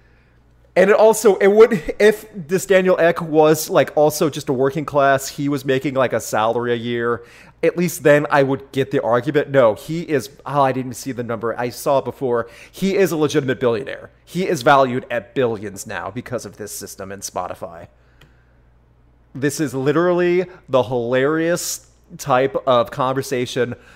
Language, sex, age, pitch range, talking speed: English, male, 30-49, 120-170 Hz, 175 wpm